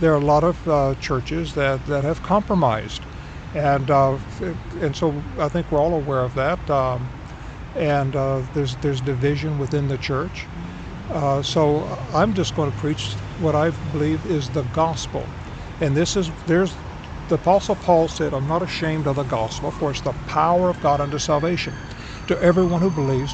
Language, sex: English, male